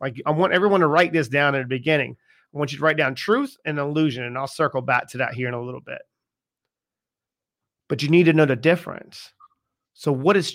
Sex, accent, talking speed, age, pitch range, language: male, American, 235 wpm, 40-59, 145-200 Hz, English